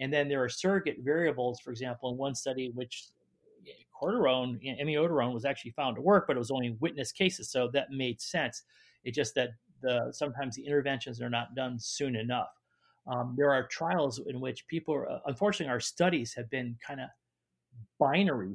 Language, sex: English, male